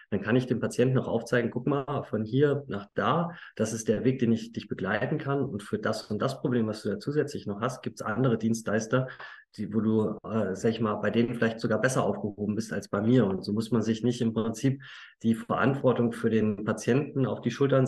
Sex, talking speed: male, 235 wpm